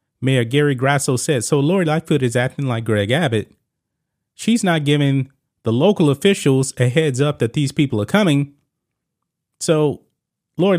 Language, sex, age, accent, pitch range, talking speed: English, male, 30-49, American, 125-165 Hz, 155 wpm